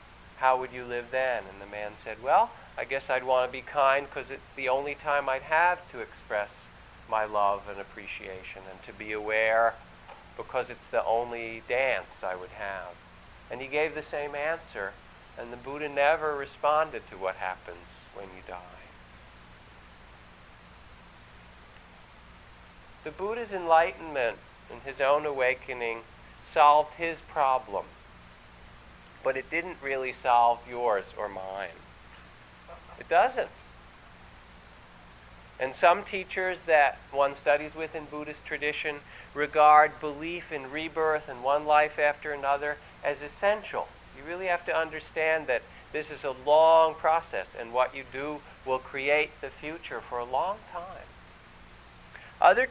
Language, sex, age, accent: English, male, 40-59, American